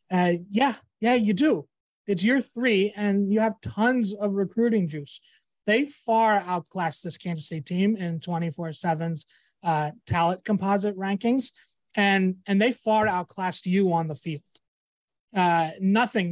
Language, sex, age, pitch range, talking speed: English, male, 20-39, 170-205 Hz, 145 wpm